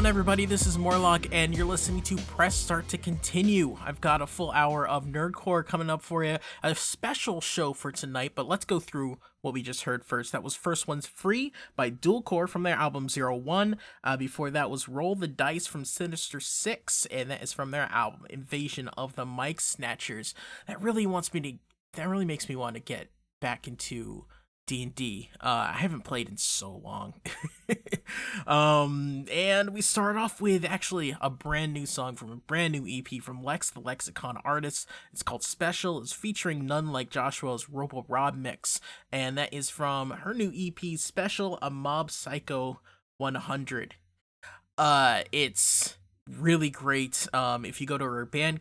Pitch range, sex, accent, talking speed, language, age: 130-175 Hz, male, American, 185 wpm, English, 20-39